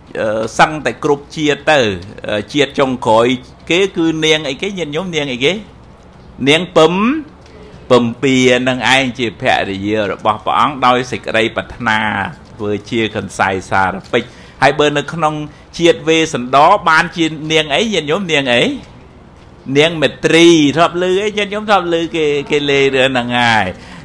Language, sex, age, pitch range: English, male, 60-79, 120-160 Hz